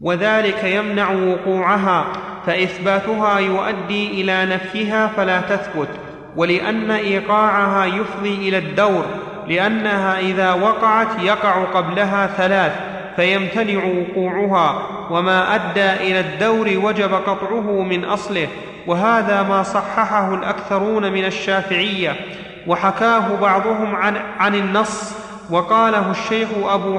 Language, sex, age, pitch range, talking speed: Arabic, male, 30-49, 190-215 Hz, 100 wpm